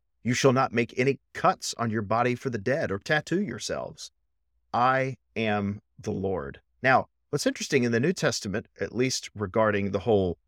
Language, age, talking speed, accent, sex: English, 40-59, 180 wpm, American, male